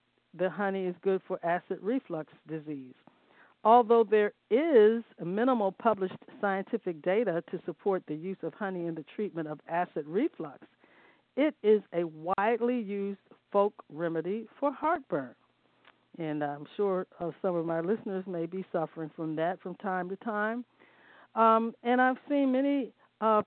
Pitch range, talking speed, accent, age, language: 175-225 Hz, 150 wpm, American, 50-69, English